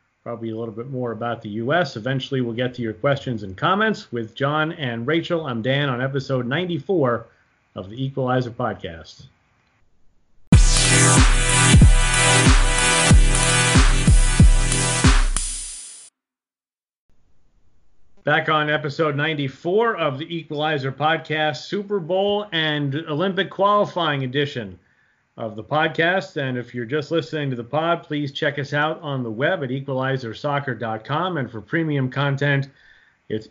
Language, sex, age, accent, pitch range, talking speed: English, male, 40-59, American, 125-155 Hz, 120 wpm